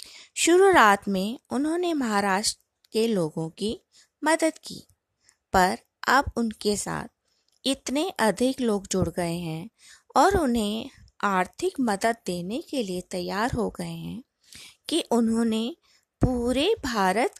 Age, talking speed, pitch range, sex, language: 20-39, 115 wpm, 200-295 Hz, female, Hindi